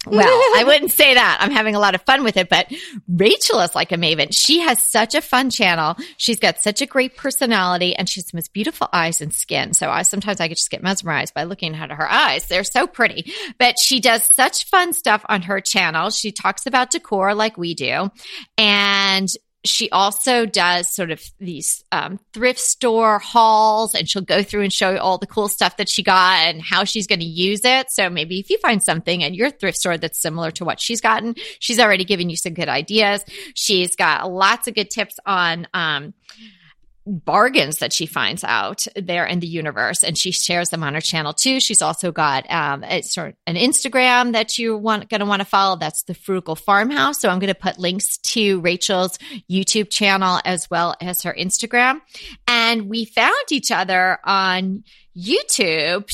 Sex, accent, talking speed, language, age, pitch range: female, American, 210 wpm, English, 30-49, 180-230 Hz